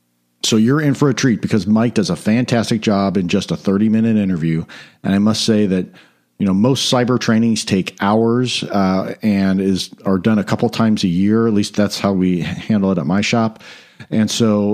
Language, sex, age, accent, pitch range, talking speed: English, male, 50-69, American, 95-115 Hz, 210 wpm